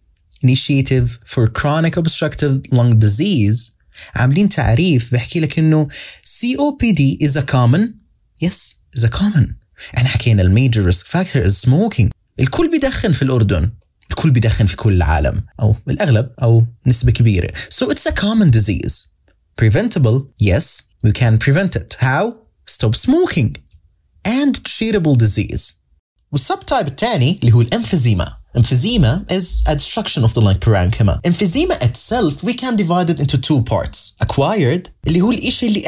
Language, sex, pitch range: English, male, 110-175 Hz